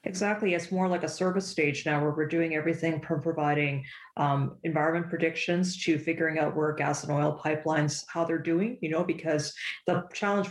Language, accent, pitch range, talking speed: English, American, 150-170 Hz, 190 wpm